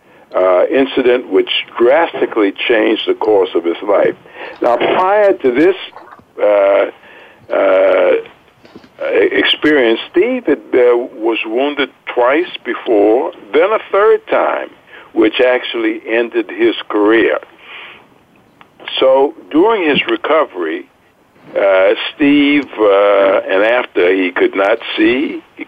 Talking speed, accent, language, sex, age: 105 wpm, American, English, male, 60-79